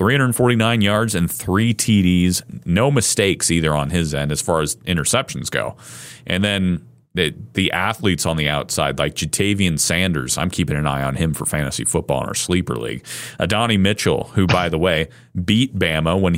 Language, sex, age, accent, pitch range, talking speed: English, male, 30-49, American, 80-100 Hz, 180 wpm